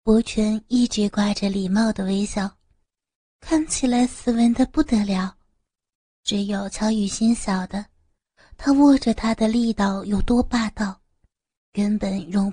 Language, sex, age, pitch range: Chinese, female, 30-49, 205-255 Hz